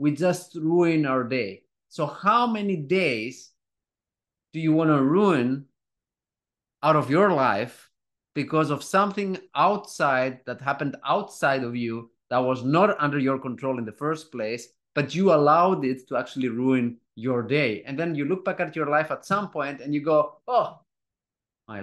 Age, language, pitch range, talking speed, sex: 30-49, English, 135-195 Hz, 170 wpm, male